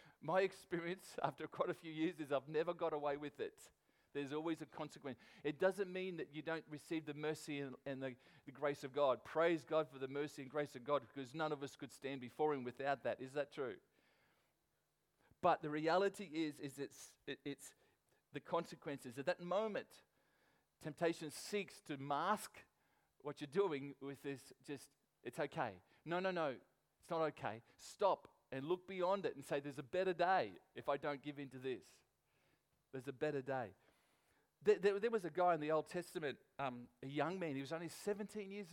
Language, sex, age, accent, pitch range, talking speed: English, male, 40-59, Australian, 140-170 Hz, 195 wpm